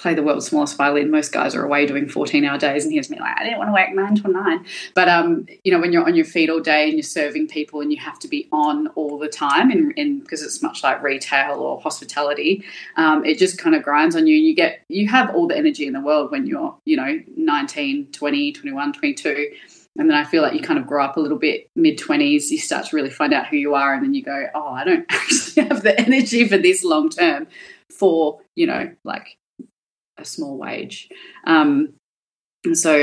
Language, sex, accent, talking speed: English, female, Australian, 235 wpm